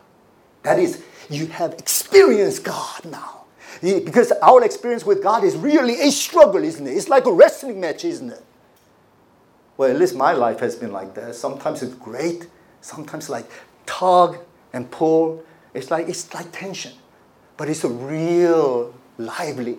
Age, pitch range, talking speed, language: 50-69, 115-175 Hz, 155 wpm, English